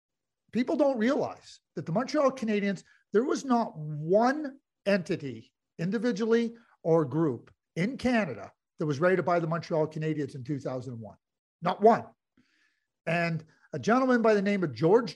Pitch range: 150-205 Hz